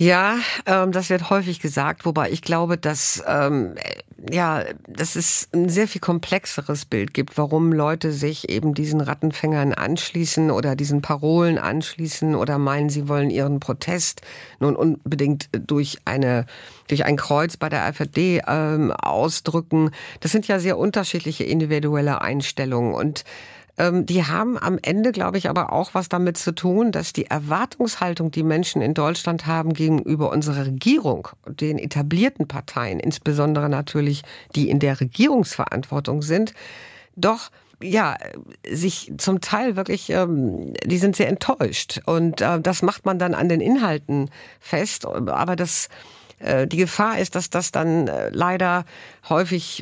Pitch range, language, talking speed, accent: 145-180 Hz, German, 140 wpm, German